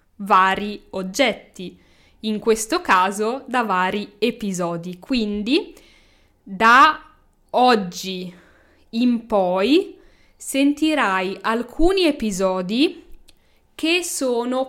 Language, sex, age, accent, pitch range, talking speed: Italian, female, 10-29, native, 200-275 Hz, 75 wpm